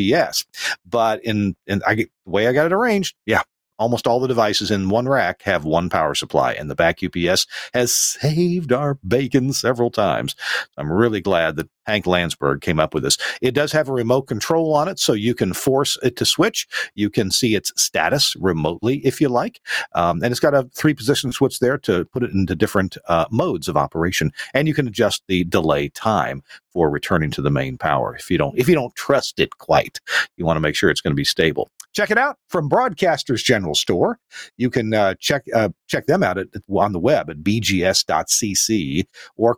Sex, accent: male, American